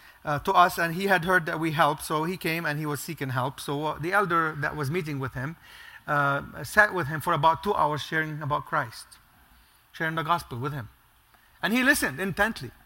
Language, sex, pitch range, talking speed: English, male, 150-200 Hz, 220 wpm